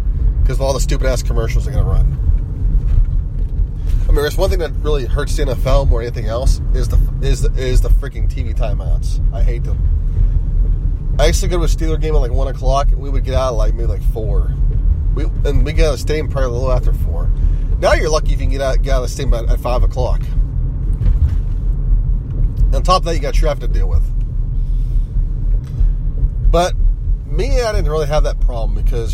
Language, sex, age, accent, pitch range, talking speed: English, male, 30-49, American, 80-120 Hz, 220 wpm